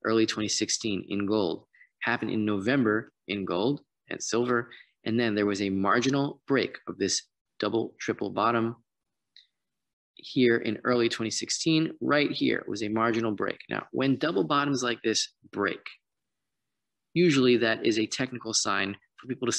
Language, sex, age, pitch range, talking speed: English, male, 20-39, 100-125 Hz, 150 wpm